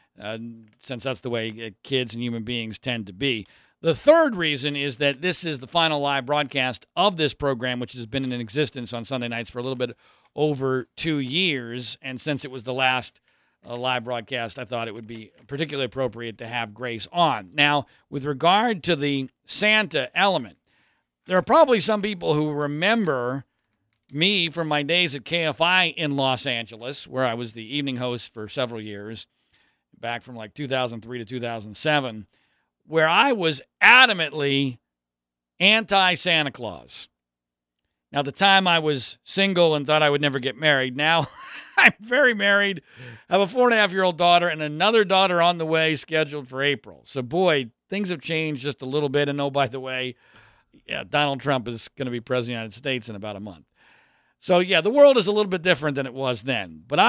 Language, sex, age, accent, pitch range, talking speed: English, male, 40-59, American, 120-165 Hz, 195 wpm